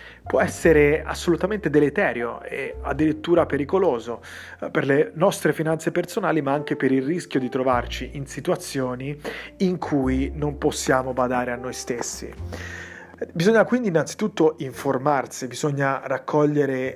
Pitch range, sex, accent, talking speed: 130-160 Hz, male, native, 125 wpm